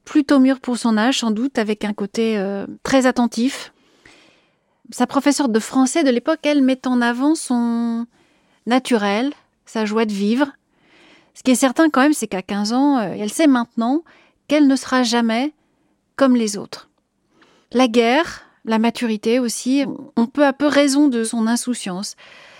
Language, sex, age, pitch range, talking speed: French, female, 30-49, 225-280 Hz, 165 wpm